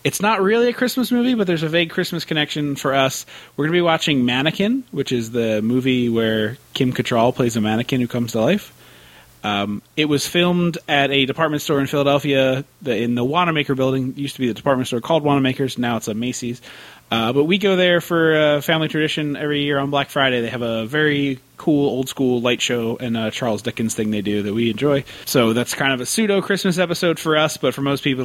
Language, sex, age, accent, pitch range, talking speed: English, male, 30-49, American, 120-160 Hz, 235 wpm